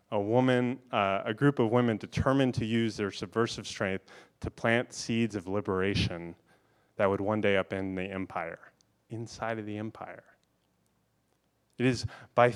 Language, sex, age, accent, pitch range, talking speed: English, male, 30-49, American, 105-125 Hz, 155 wpm